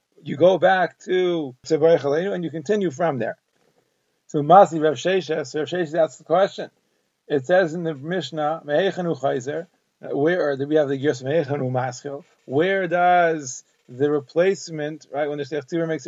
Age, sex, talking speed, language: 40-59, male, 135 wpm, English